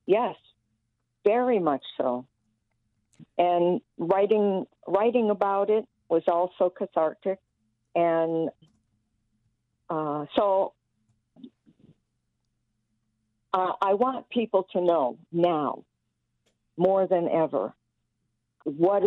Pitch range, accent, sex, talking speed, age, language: 130-200 Hz, American, female, 80 wpm, 50-69, English